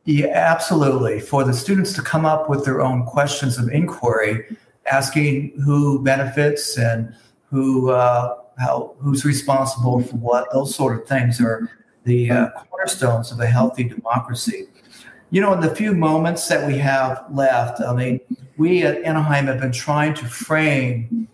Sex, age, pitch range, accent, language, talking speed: male, 50-69, 120-145 Hz, American, English, 160 wpm